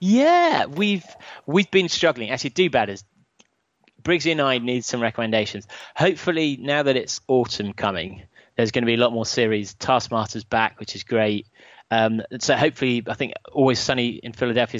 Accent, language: British, English